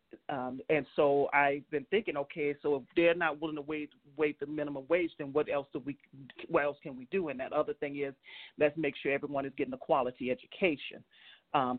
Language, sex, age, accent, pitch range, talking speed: English, male, 40-59, American, 135-160 Hz, 220 wpm